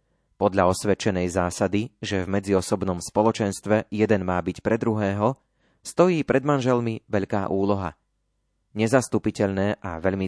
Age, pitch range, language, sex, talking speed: 30-49, 95-125 Hz, Slovak, male, 115 wpm